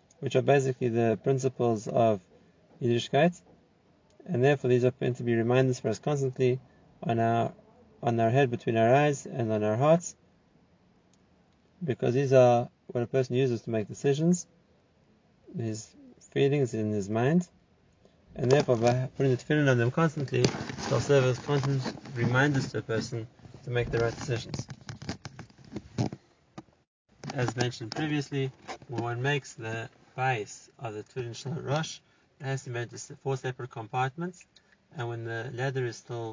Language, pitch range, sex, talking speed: English, 120-140 Hz, male, 160 wpm